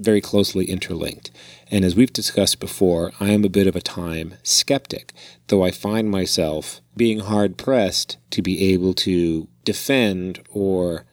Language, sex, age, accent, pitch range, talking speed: English, male, 30-49, American, 85-105 Hz, 150 wpm